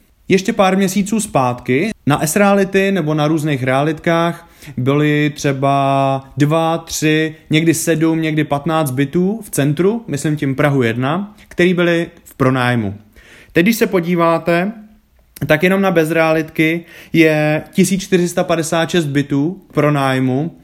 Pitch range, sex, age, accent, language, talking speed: 145-180 Hz, male, 20-39, native, Czech, 120 wpm